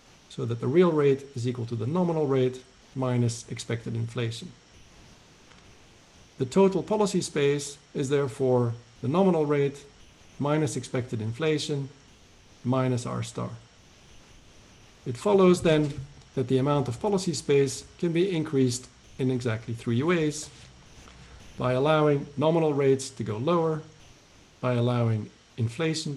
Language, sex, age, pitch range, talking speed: English, male, 50-69, 120-155 Hz, 125 wpm